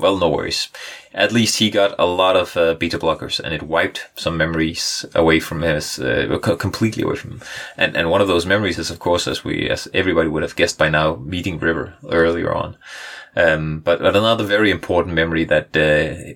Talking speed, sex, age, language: 210 wpm, male, 30-49, English